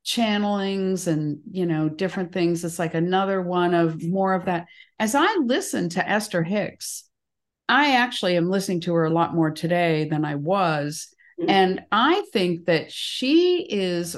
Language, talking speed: English, 165 wpm